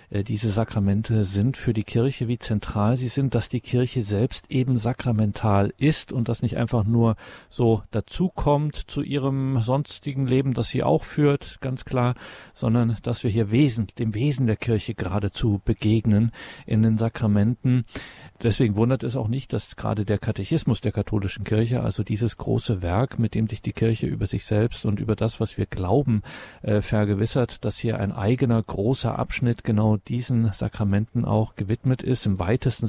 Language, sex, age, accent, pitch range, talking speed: German, male, 50-69, German, 105-120 Hz, 170 wpm